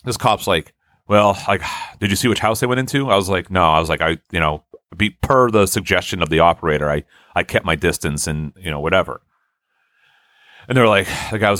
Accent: American